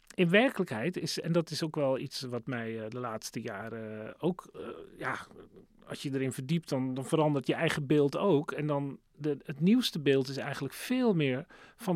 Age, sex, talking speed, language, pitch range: 40-59, male, 195 wpm, Dutch, 130-180 Hz